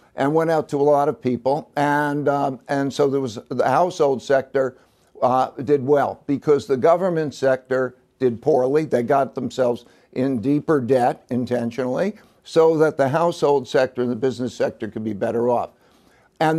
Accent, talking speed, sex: American, 170 wpm, male